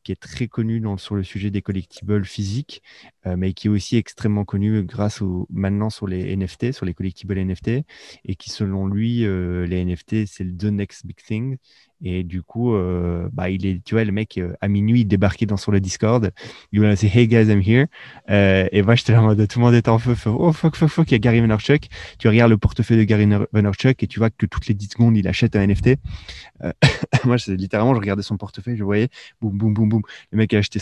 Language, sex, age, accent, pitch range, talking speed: French, male, 20-39, French, 100-115 Hz, 240 wpm